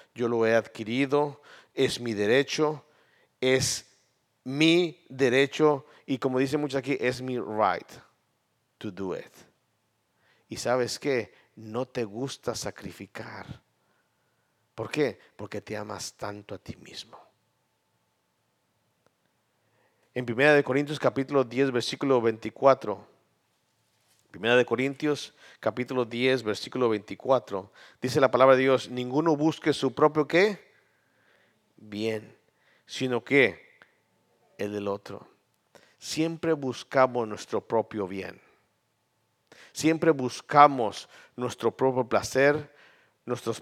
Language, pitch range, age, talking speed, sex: Spanish, 115-140 Hz, 50-69, 105 wpm, male